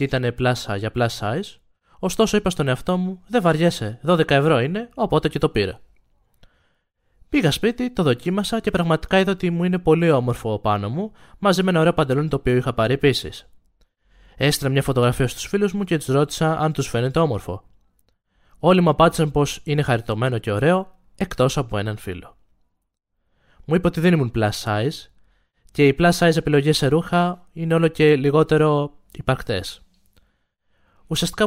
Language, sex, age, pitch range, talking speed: Greek, male, 20-39, 120-175 Hz, 170 wpm